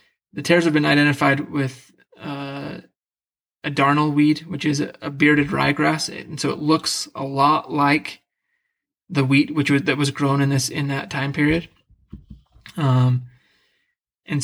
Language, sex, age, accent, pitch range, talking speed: English, male, 20-39, American, 135-150 Hz, 160 wpm